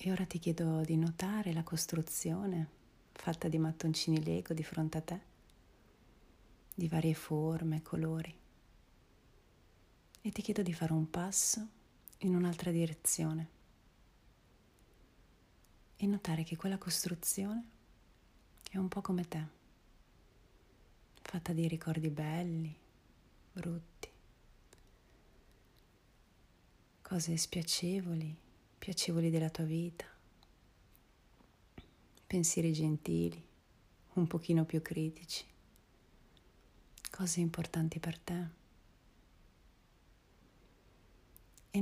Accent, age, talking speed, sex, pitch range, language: native, 30-49, 90 wpm, female, 115-175 Hz, Italian